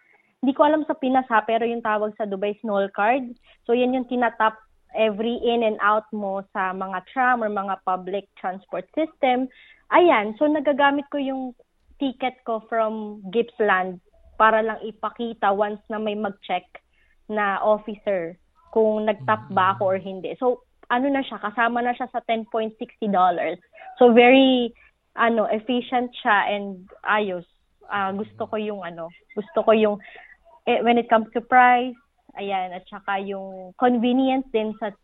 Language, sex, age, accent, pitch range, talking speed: Filipino, female, 20-39, native, 205-255 Hz, 160 wpm